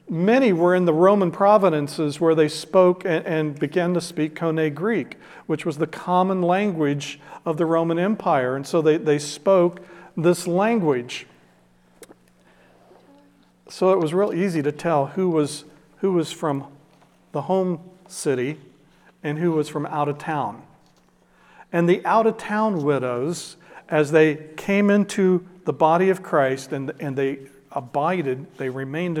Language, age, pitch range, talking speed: English, 50-69, 145-180 Hz, 150 wpm